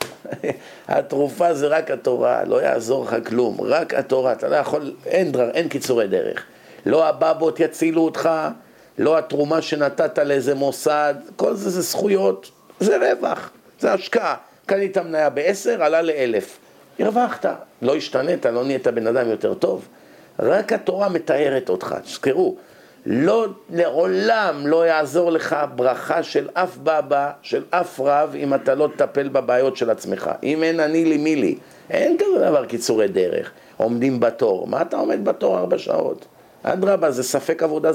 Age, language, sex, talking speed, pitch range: 50-69, Hebrew, male, 150 wpm, 140-185 Hz